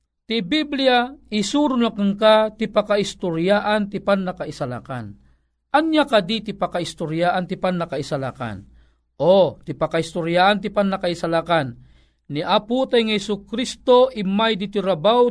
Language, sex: Filipino, male